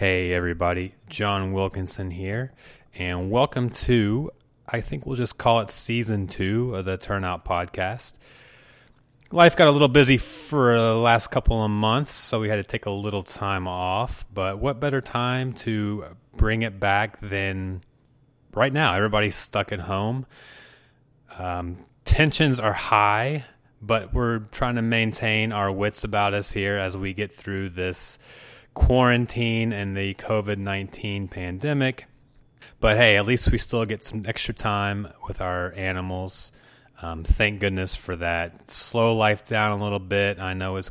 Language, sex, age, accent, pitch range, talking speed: English, male, 30-49, American, 95-120 Hz, 155 wpm